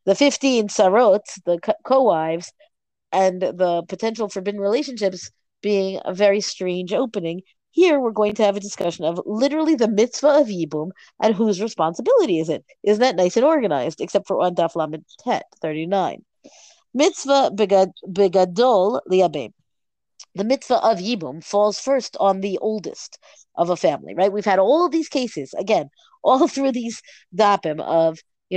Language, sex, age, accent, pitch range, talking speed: English, female, 40-59, American, 185-255 Hz, 150 wpm